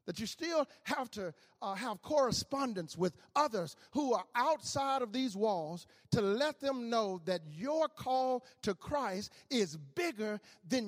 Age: 40-59